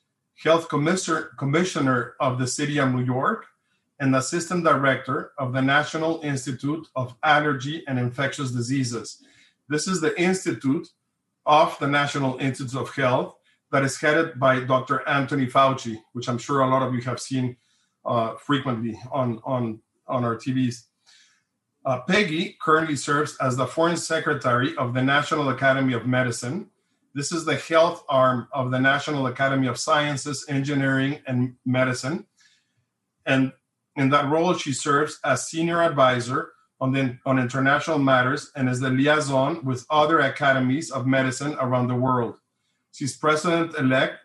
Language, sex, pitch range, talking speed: English, male, 130-150 Hz, 145 wpm